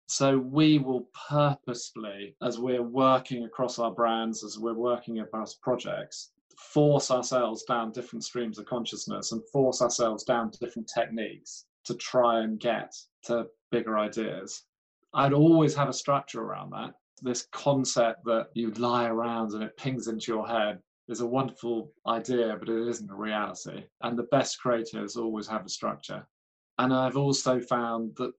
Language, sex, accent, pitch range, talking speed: English, male, British, 115-130 Hz, 165 wpm